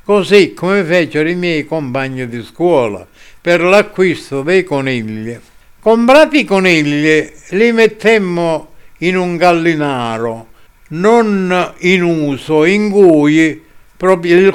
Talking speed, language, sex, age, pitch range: 105 wpm, Italian, male, 60-79, 140-185 Hz